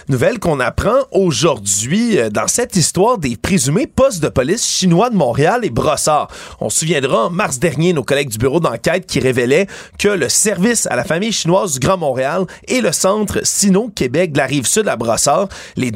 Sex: male